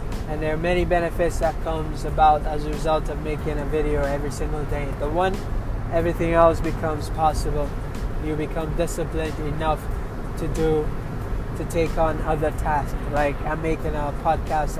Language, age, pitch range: English, 20-39, 130-165 Hz